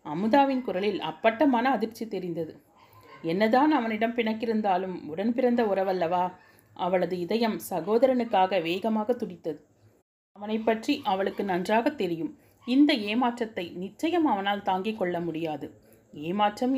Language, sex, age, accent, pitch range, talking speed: Tamil, female, 30-49, native, 170-225 Hz, 100 wpm